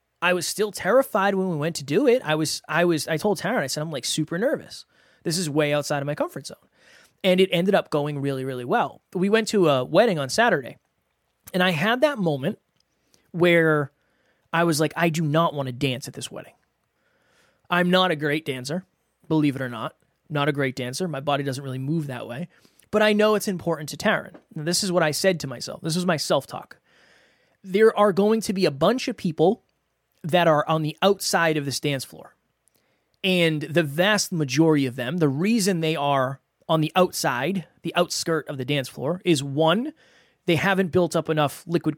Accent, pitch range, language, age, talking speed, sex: American, 145-185 Hz, English, 20-39, 215 wpm, male